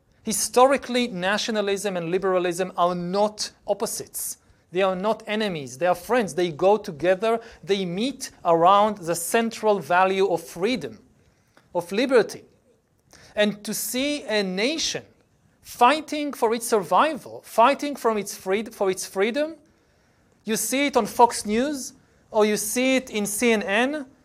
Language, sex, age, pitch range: Korean, male, 40-59, 195-250 Hz